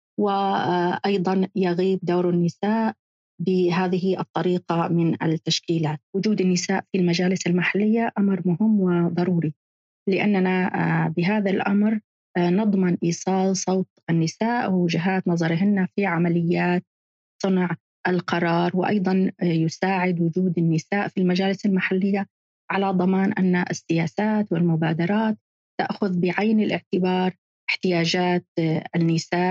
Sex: female